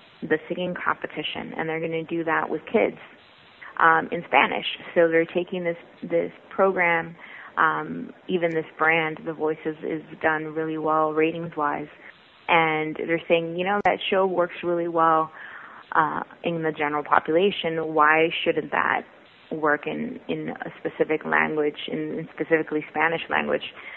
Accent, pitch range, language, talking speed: American, 160-180 Hz, English, 150 wpm